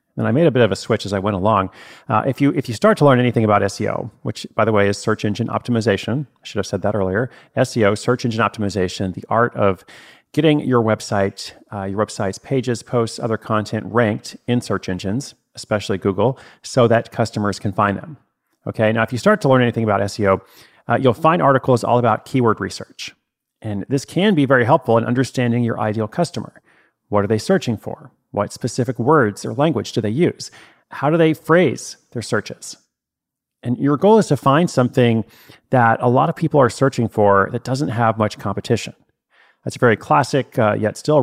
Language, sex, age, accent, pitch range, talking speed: English, male, 40-59, American, 105-130 Hz, 200 wpm